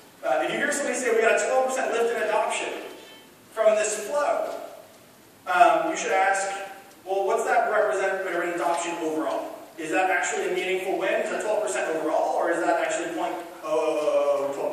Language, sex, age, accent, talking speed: English, male, 30-49, American, 175 wpm